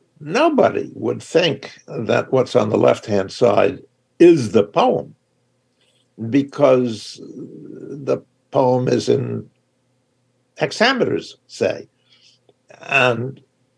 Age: 60-79